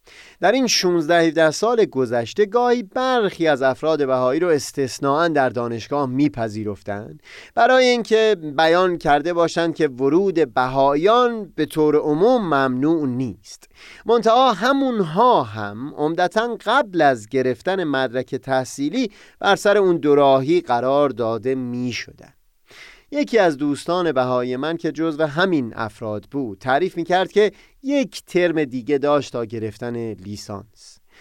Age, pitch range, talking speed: 30-49, 125-180 Hz, 125 wpm